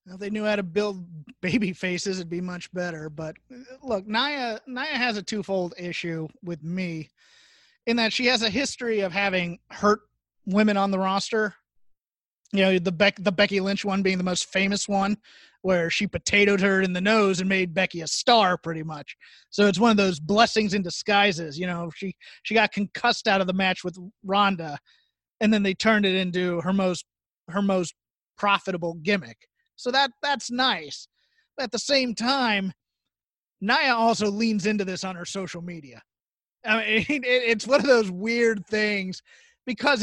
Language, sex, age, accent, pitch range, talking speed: English, male, 30-49, American, 180-220 Hz, 185 wpm